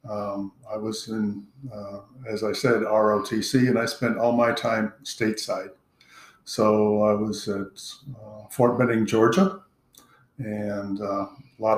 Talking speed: 145 wpm